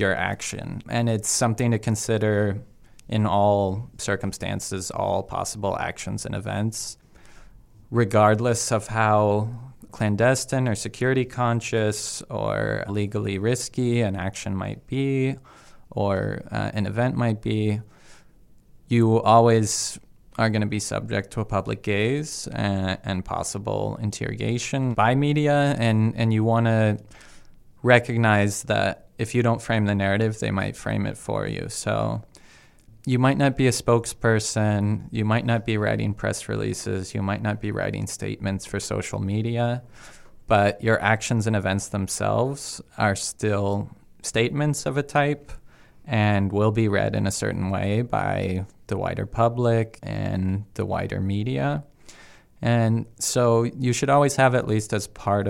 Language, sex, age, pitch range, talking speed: English, male, 20-39, 105-120 Hz, 145 wpm